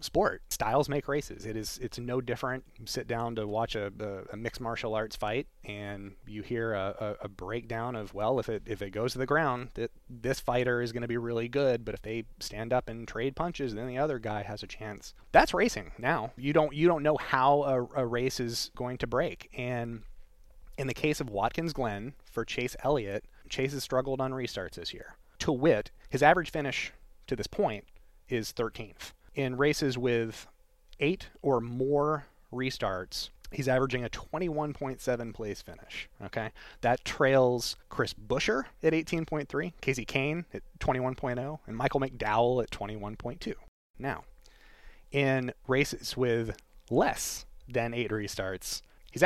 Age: 30-49